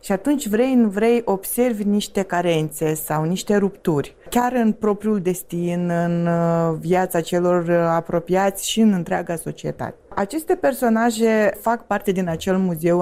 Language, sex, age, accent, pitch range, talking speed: Romanian, female, 20-39, native, 170-215 Hz, 140 wpm